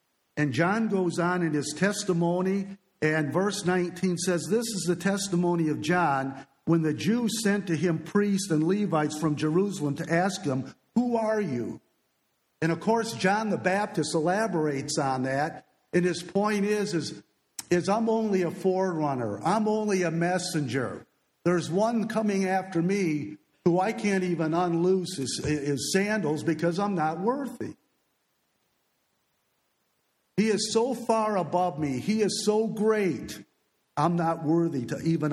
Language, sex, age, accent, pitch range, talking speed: English, male, 50-69, American, 155-195 Hz, 150 wpm